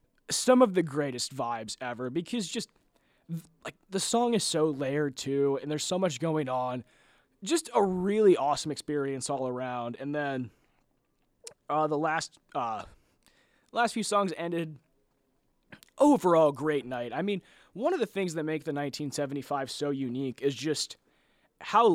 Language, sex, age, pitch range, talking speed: English, male, 20-39, 140-195 Hz, 155 wpm